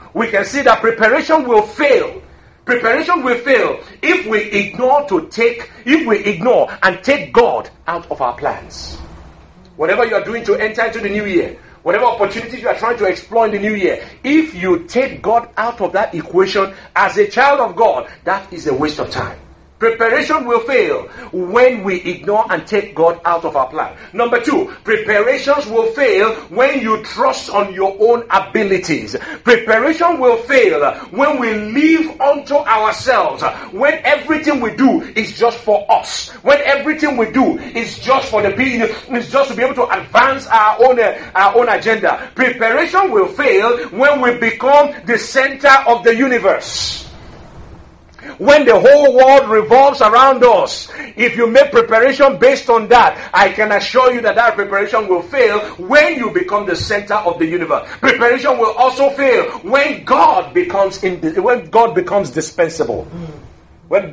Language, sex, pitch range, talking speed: English, male, 205-275 Hz, 170 wpm